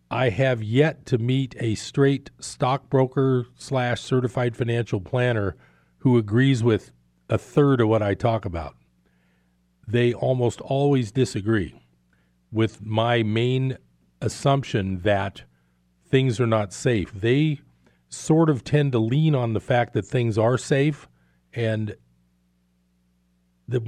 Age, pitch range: 40-59, 100-130 Hz